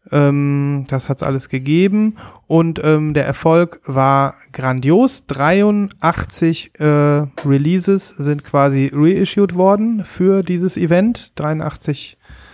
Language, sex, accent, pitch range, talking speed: German, male, German, 140-175 Hz, 110 wpm